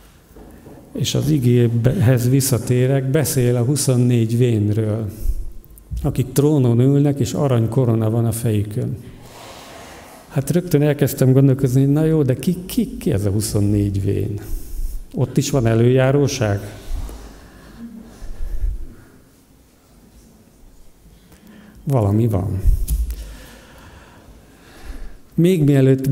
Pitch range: 110-135 Hz